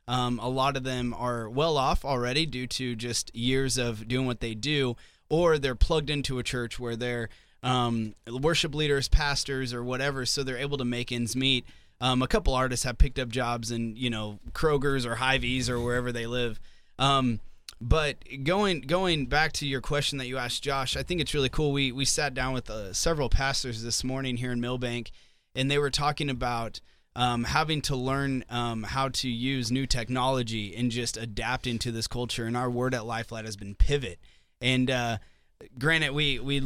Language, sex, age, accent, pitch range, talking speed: English, male, 20-39, American, 120-140 Hz, 200 wpm